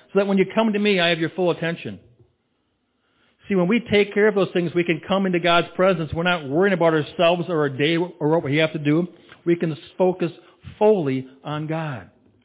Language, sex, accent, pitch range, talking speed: English, male, American, 130-165 Hz, 220 wpm